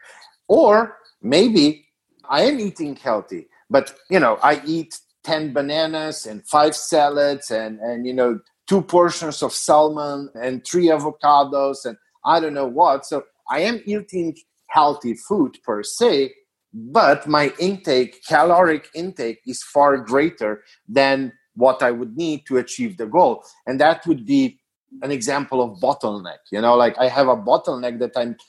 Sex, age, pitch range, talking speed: male, 50-69, 130-175 Hz, 160 wpm